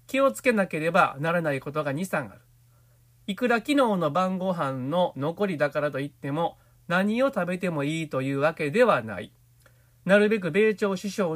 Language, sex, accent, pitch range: Japanese, male, native, 135-200 Hz